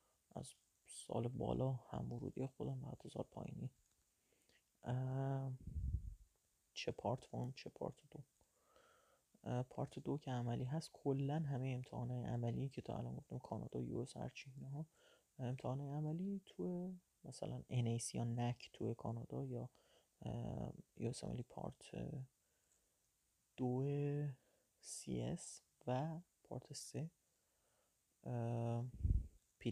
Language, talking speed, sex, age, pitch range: Persian, 100 wpm, male, 30-49, 115-150 Hz